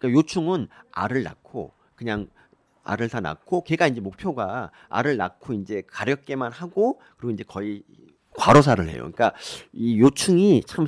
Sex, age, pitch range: male, 40-59, 115-185 Hz